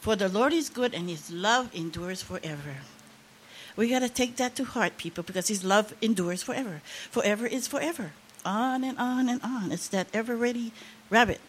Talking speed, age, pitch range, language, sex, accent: 190 wpm, 60-79, 185-255 Hz, English, female, American